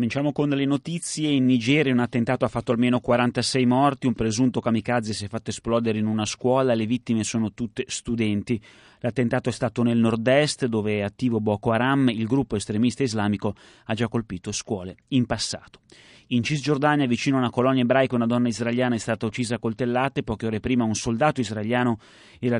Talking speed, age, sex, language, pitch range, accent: 185 wpm, 30-49, male, Italian, 110-130 Hz, native